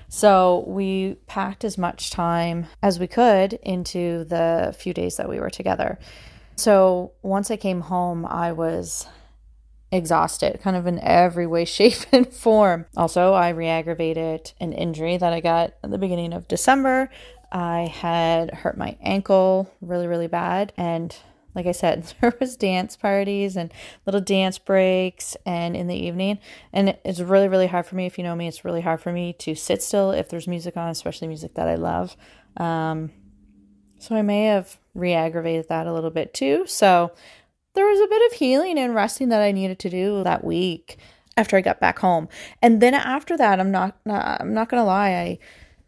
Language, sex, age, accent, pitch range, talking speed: English, female, 20-39, American, 170-200 Hz, 185 wpm